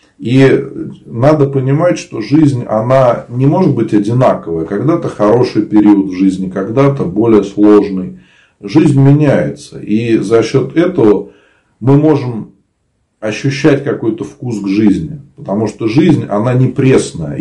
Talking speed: 130 wpm